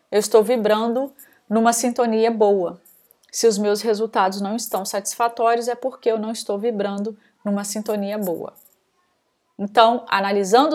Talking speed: 135 wpm